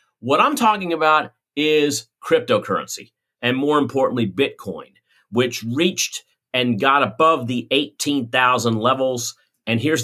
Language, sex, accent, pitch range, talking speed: English, male, American, 115-145 Hz, 120 wpm